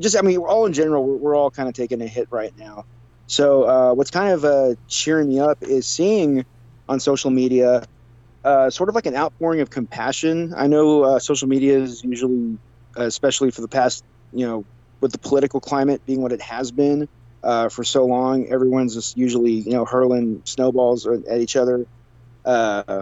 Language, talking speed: English, 200 wpm